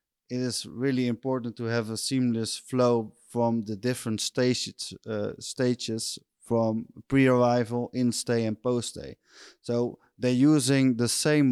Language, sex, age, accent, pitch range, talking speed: English, male, 20-39, Dutch, 110-125 Hz, 130 wpm